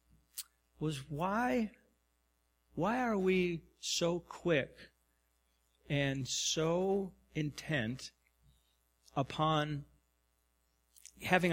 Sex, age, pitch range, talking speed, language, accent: male, 50-69, 110-160 Hz, 60 wpm, English, American